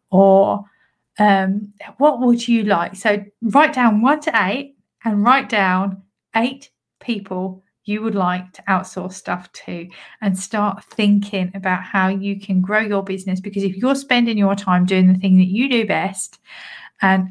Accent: British